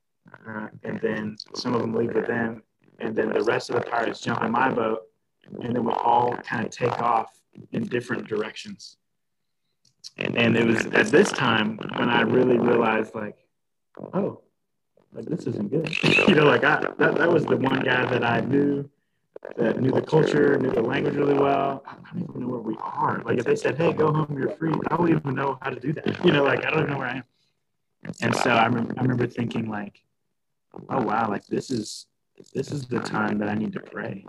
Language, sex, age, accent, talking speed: English, male, 30-49, American, 215 wpm